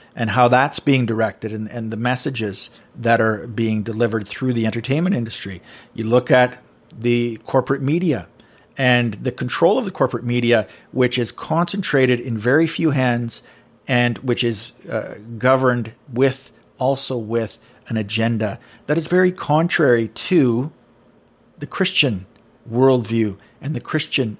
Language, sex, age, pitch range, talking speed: English, male, 50-69, 110-130 Hz, 145 wpm